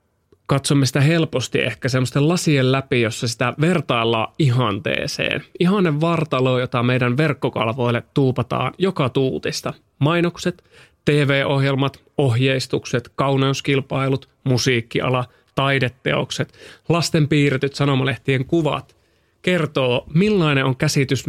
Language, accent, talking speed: Finnish, native, 90 wpm